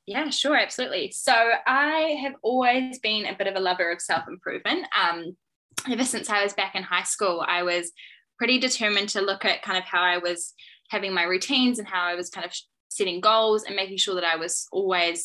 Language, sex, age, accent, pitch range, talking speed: English, female, 10-29, Australian, 180-220 Hz, 210 wpm